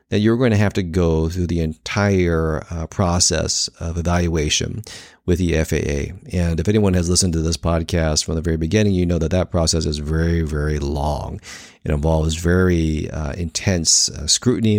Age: 40-59